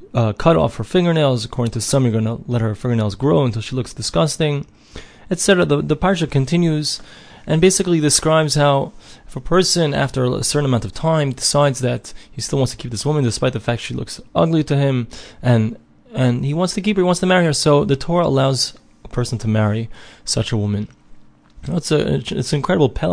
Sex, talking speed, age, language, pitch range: male, 220 wpm, 20-39, English, 120-150 Hz